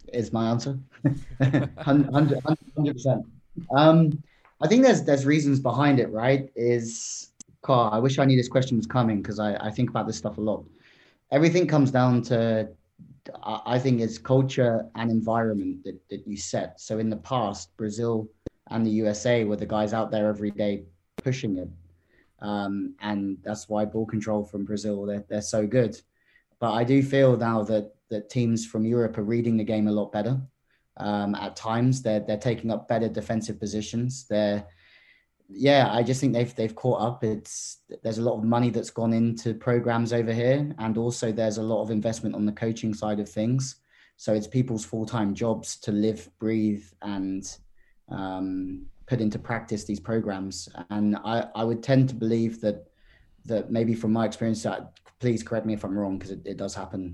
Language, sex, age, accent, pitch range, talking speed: English, male, 30-49, British, 105-125 Hz, 185 wpm